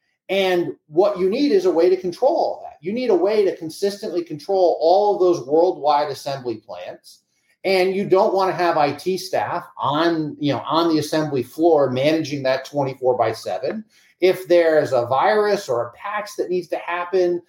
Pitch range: 150-200 Hz